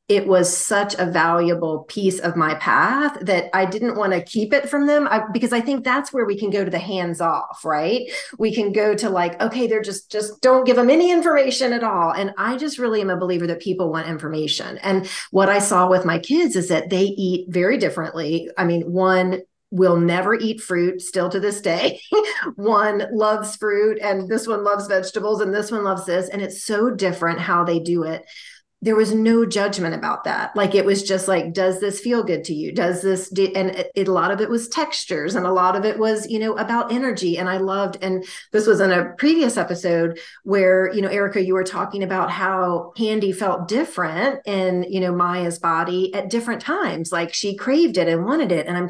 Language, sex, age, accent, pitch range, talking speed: English, female, 40-59, American, 180-220 Hz, 220 wpm